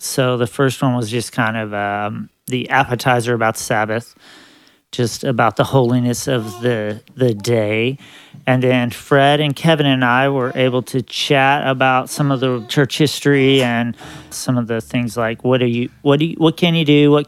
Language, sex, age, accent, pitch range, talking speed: English, male, 40-59, American, 120-145 Hz, 190 wpm